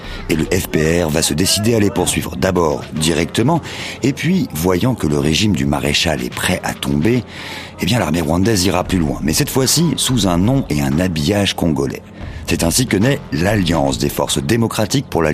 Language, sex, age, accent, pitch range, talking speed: French, male, 50-69, French, 80-110 Hz, 195 wpm